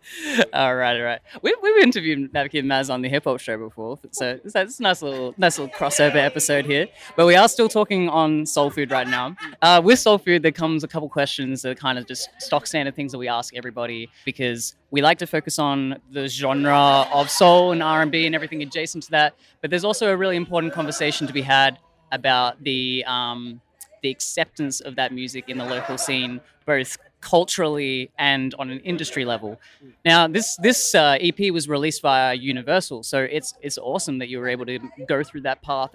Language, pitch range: English, 130-160 Hz